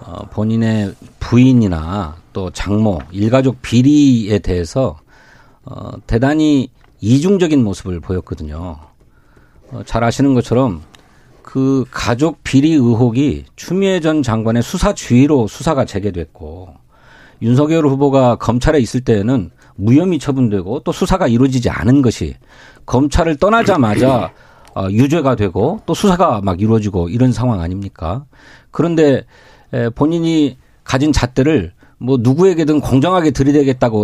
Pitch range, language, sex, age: 105-145 Hz, Korean, male, 40-59